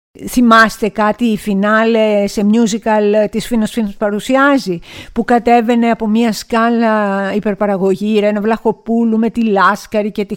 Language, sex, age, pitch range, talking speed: Greek, female, 50-69, 210-290 Hz, 135 wpm